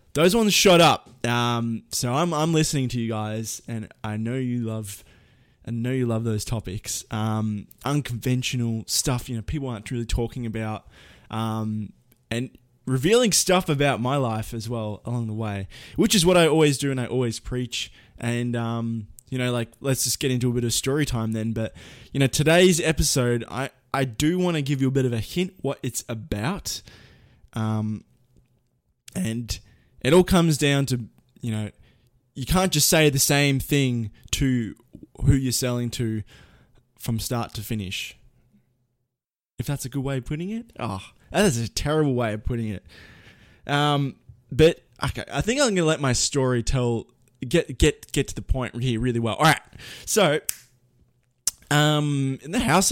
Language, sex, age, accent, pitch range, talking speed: English, male, 20-39, Australian, 115-140 Hz, 180 wpm